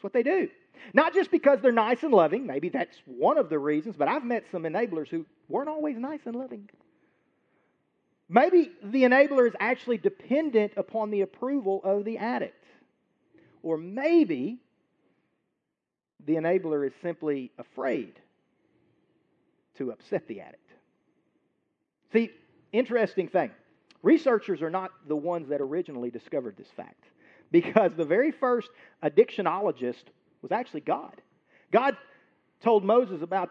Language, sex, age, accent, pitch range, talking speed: English, male, 40-59, American, 180-275 Hz, 135 wpm